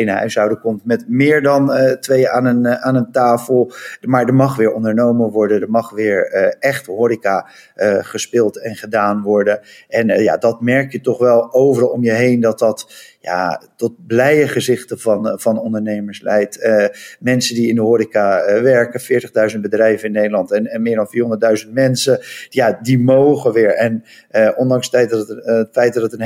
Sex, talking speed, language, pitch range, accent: male, 210 wpm, Dutch, 110-125 Hz, Dutch